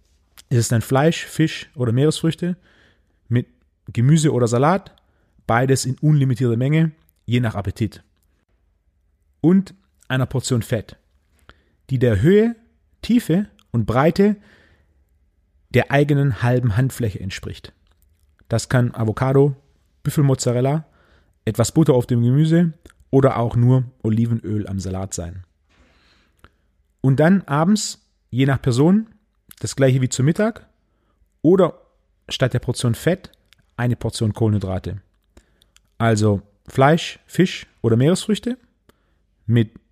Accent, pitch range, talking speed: German, 90-145 Hz, 110 wpm